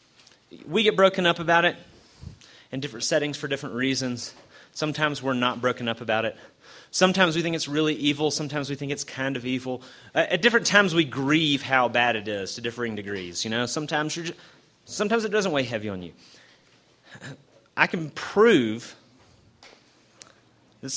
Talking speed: 170 wpm